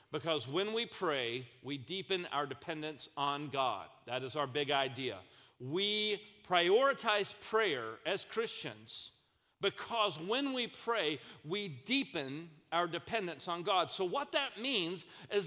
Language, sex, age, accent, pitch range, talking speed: English, male, 40-59, American, 160-220 Hz, 135 wpm